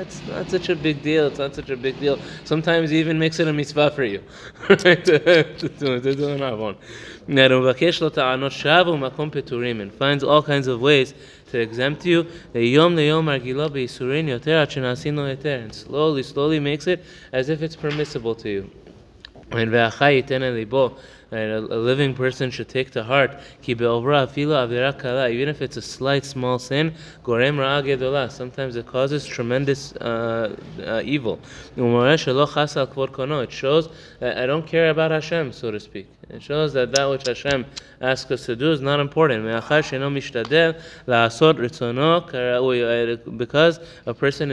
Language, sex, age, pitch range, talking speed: English, male, 20-39, 125-155 Hz, 120 wpm